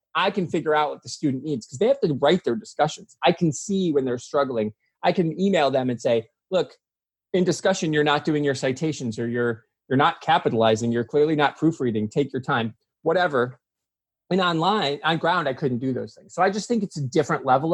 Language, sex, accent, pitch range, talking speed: English, male, American, 120-155 Hz, 220 wpm